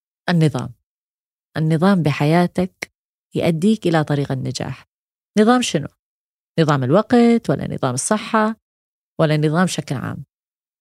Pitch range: 145-190 Hz